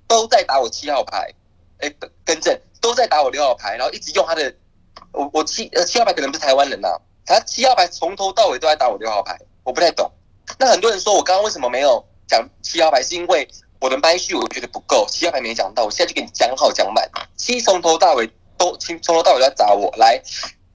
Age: 20-39